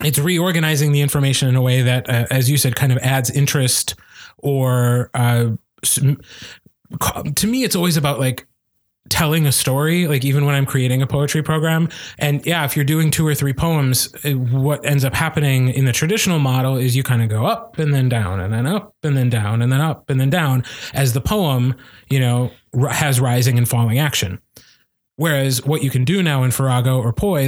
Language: English